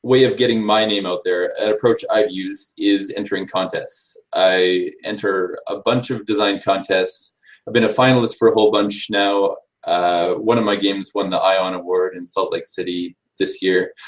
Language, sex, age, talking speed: English, male, 20-39, 190 wpm